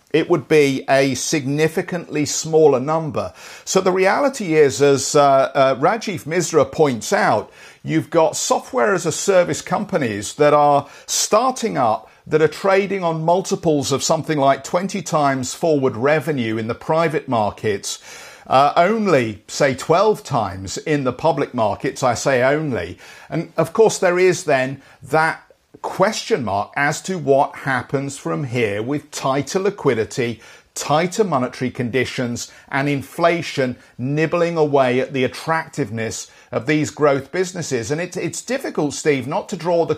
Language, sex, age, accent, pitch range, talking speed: English, male, 50-69, British, 135-175 Hz, 145 wpm